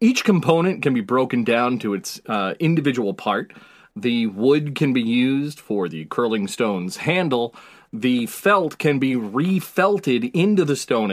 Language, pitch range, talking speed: English, 125-165 Hz, 155 wpm